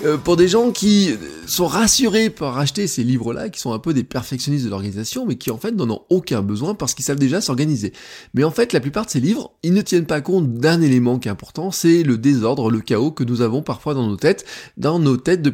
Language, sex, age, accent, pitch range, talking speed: French, male, 20-39, French, 120-165 Hz, 255 wpm